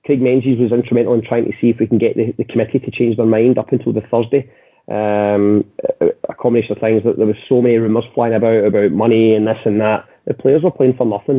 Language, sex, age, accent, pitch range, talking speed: English, male, 30-49, British, 115-140 Hz, 255 wpm